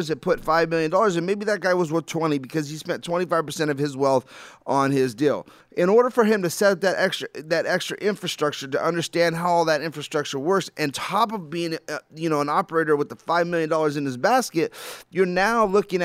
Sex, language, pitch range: male, English, 150-190 Hz